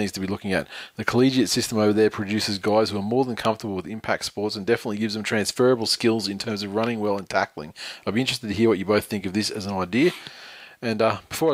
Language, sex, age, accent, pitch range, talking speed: English, male, 20-39, Australian, 105-120 Hz, 260 wpm